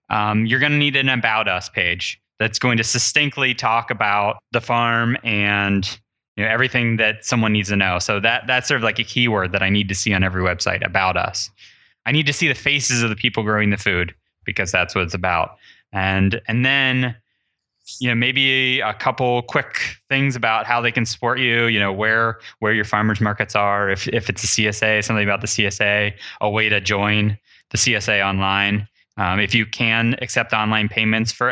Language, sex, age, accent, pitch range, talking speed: English, male, 20-39, American, 100-120 Hz, 205 wpm